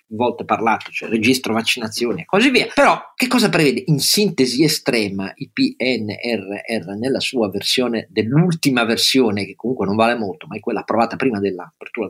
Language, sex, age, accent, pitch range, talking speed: Italian, male, 40-59, native, 100-155 Hz, 170 wpm